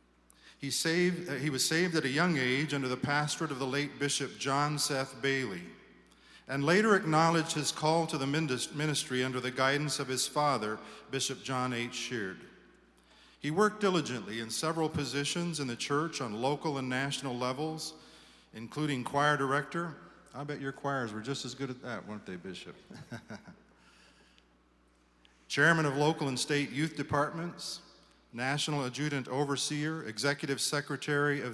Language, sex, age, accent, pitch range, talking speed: English, male, 40-59, American, 125-155 Hz, 150 wpm